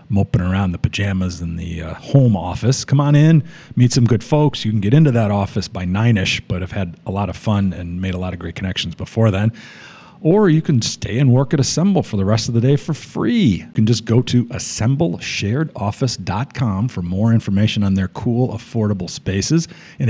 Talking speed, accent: 210 wpm, American